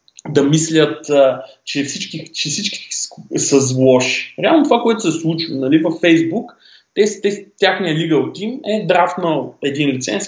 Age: 20-39